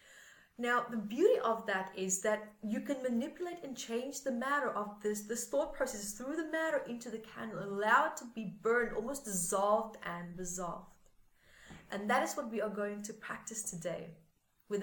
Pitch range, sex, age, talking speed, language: 200-265 Hz, female, 30-49, 185 wpm, English